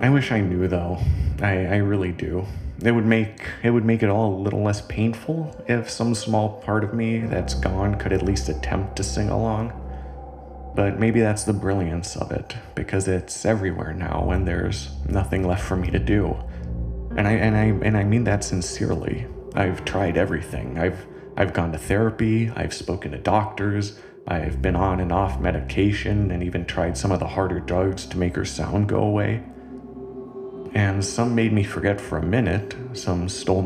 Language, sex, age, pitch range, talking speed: English, male, 30-49, 90-105 Hz, 190 wpm